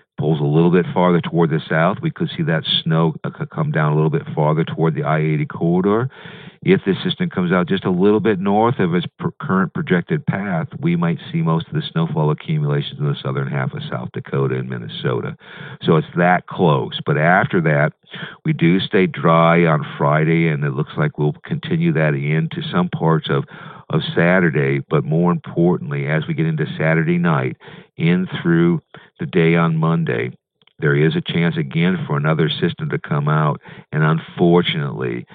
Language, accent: English, American